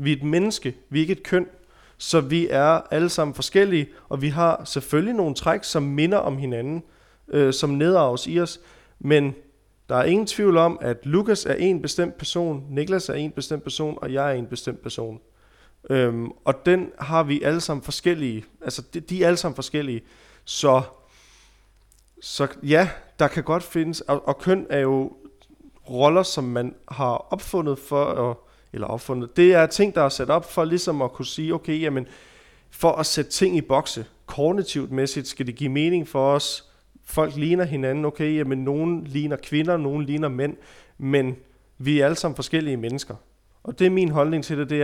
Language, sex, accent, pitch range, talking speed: Danish, male, native, 135-165 Hz, 190 wpm